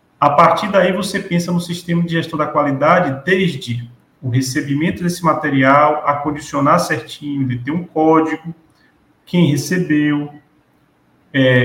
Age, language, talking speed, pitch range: 40-59, Portuguese, 135 wpm, 135-160 Hz